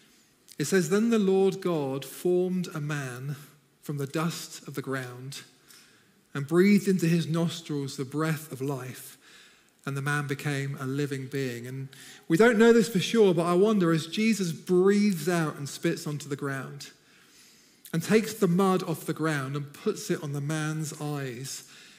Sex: male